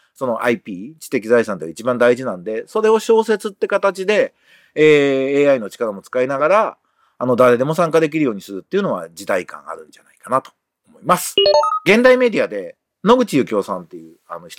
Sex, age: male, 40-59